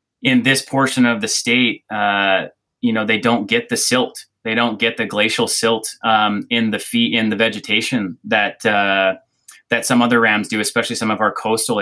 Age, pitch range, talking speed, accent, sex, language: 20-39, 100-115 Hz, 200 wpm, American, male, English